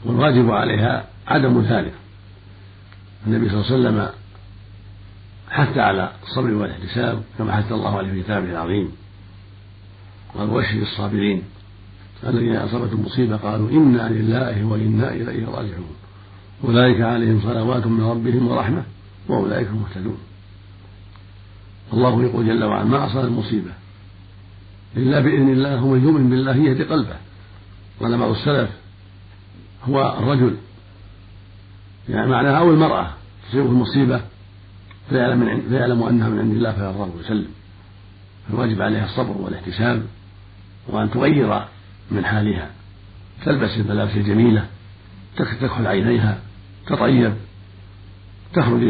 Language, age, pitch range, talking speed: Arabic, 50-69, 100-115 Hz, 110 wpm